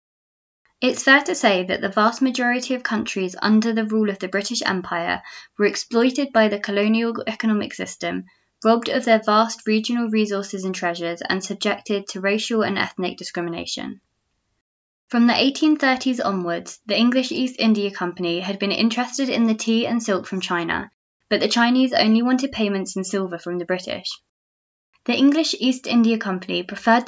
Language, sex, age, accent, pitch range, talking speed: English, female, 20-39, British, 190-230 Hz, 165 wpm